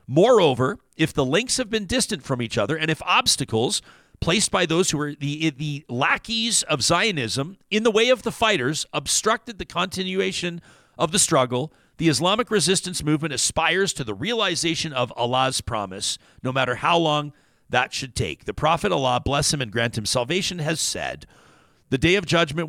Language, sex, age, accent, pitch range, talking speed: English, male, 50-69, American, 135-175 Hz, 175 wpm